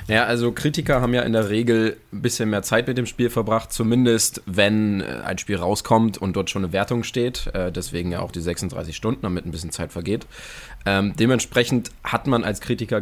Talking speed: 200 wpm